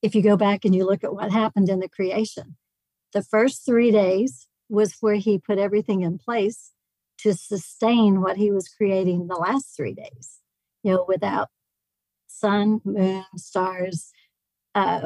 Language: English